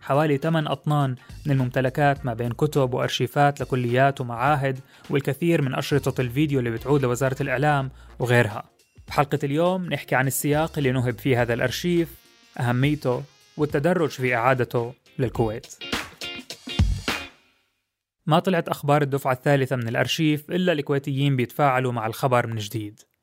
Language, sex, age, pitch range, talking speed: Arabic, male, 20-39, 125-155 Hz, 125 wpm